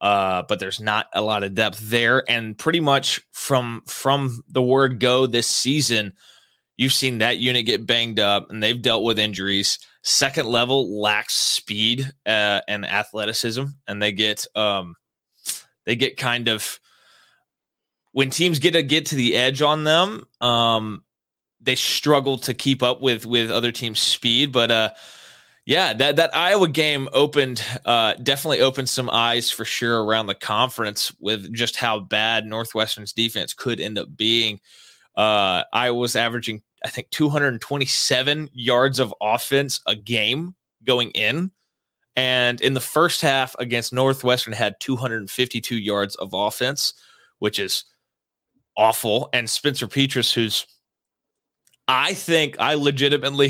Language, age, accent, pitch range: English, 20-39, American, 110-135 Hz